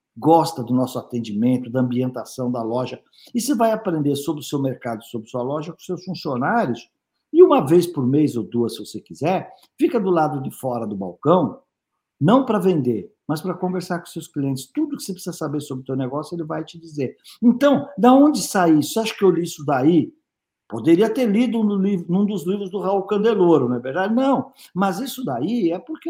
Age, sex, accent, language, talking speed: 50-69, male, Brazilian, Portuguese, 210 wpm